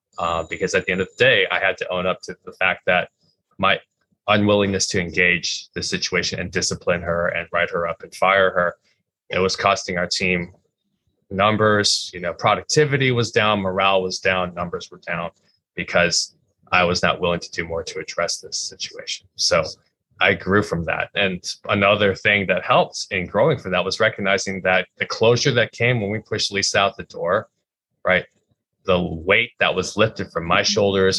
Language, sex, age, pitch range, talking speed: English, male, 20-39, 90-110 Hz, 190 wpm